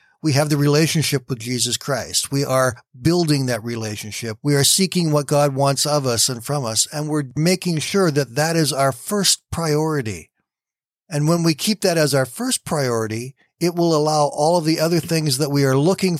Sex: male